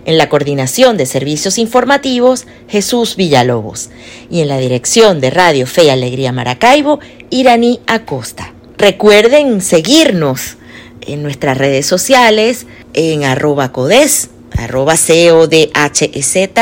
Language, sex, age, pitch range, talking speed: Spanish, female, 40-59, 140-220 Hz, 110 wpm